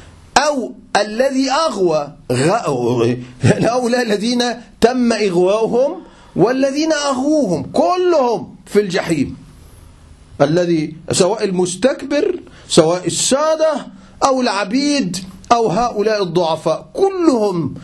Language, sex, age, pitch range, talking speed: Arabic, male, 40-59, 170-255 Hz, 80 wpm